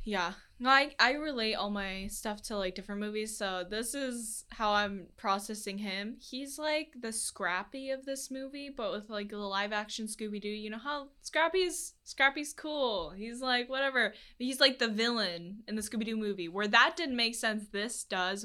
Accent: American